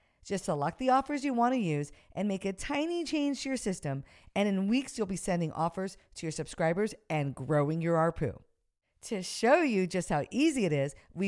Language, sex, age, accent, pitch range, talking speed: English, female, 50-69, American, 160-240 Hz, 205 wpm